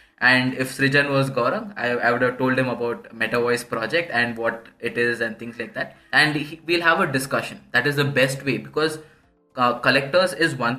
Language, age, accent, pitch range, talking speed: Hindi, 20-39, native, 120-150 Hz, 215 wpm